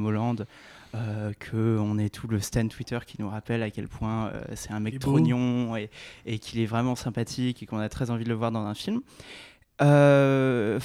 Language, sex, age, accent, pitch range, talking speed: French, male, 20-39, French, 110-130 Hz, 205 wpm